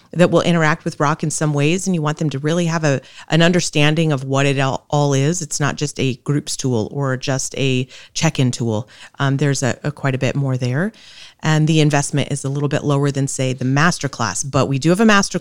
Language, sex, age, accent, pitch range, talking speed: English, female, 30-49, American, 135-170 Hz, 245 wpm